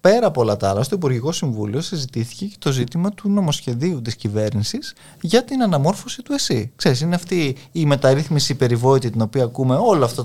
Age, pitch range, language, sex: 20-39, 125-170 Hz, Greek, male